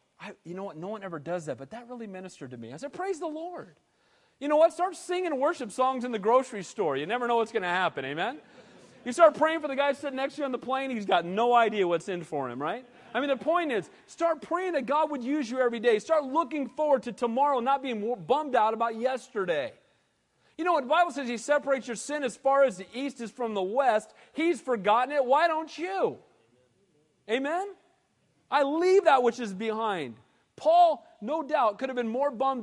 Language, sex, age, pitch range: English, male, 40-59, 185-275 Hz